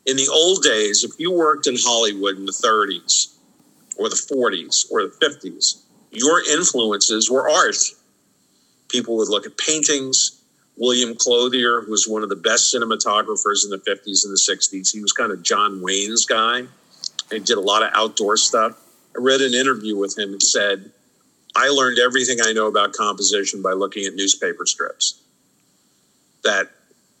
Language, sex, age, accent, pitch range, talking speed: English, male, 50-69, American, 100-135 Hz, 170 wpm